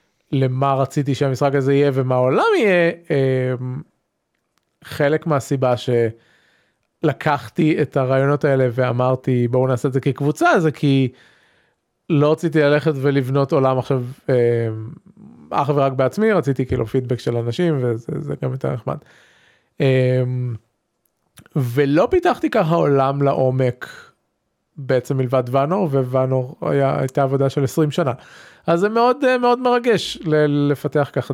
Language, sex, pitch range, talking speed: Hebrew, male, 130-160 Hz, 120 wpm